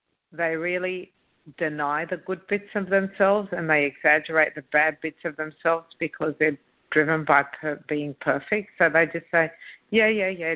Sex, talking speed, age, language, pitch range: female, 165 wpm, 60-79, English, 150-185 Hz